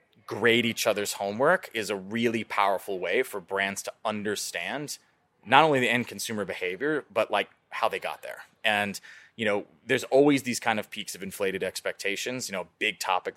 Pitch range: 100-125 Hz